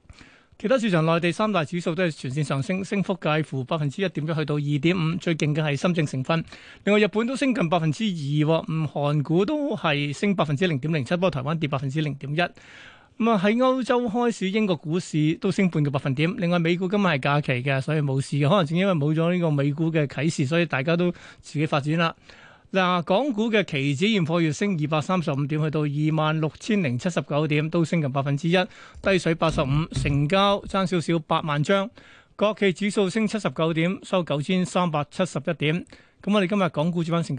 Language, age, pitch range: Chinese, 30-49, 150-190 Hz